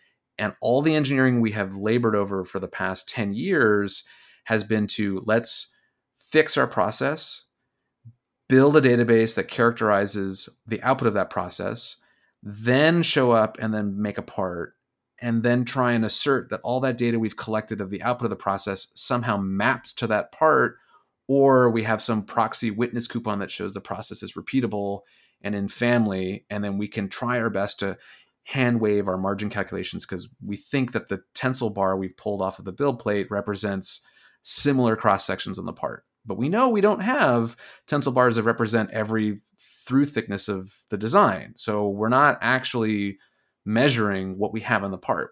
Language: English